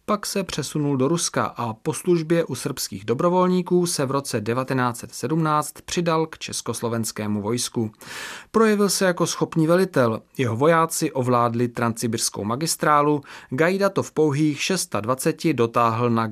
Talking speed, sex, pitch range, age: 130 wpm, male, 110-155 Hz, 30-49